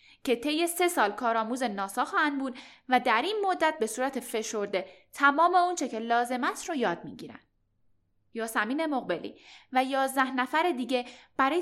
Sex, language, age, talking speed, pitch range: female, Persian, 10-29, 170 wpm, 225-315 Hz